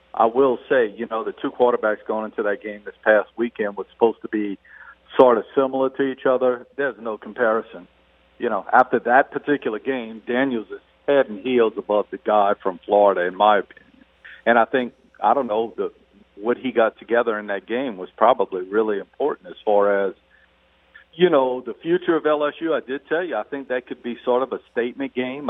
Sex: male